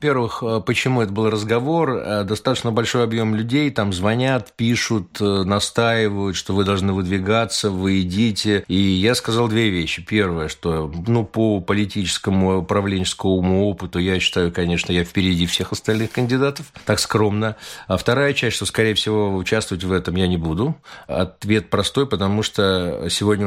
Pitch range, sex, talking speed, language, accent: 90-110 Hz, male, 150 wpm, Russian, native